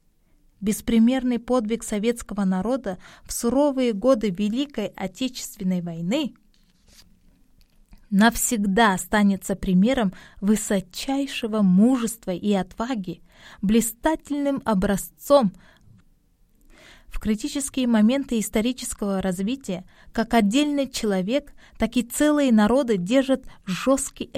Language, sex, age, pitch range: Korean, female, 20-39, 195-260 Hz